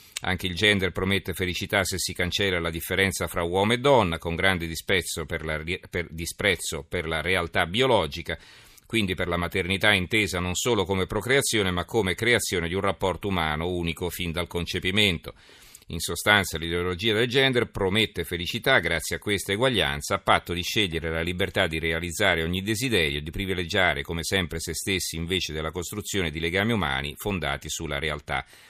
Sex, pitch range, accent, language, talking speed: male, 85-105 Hz, native, Italian, 165 wpm